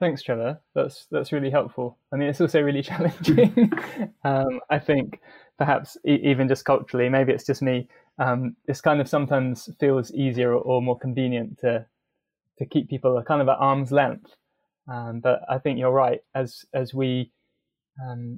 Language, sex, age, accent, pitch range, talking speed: English, male, 20-39, British, 120-140 Hz, 175 wpm